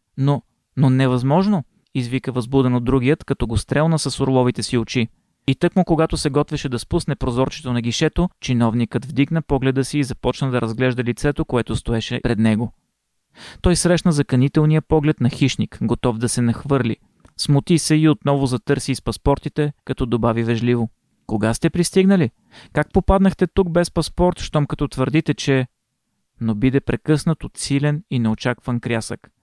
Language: Bulgarian